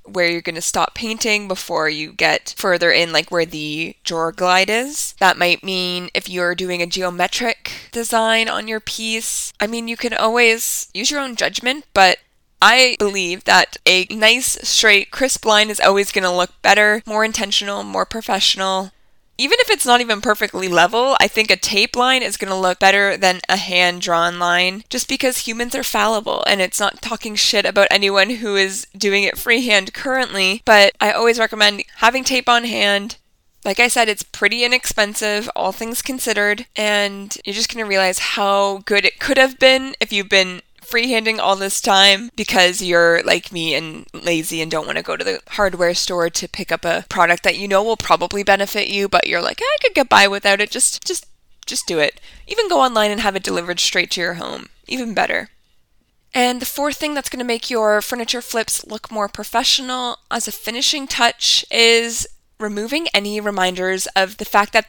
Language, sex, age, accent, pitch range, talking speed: English, female, 20-39, American, 185-235 Hz, 195 wpm